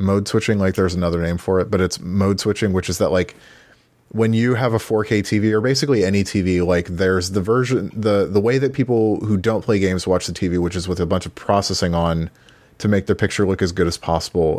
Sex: male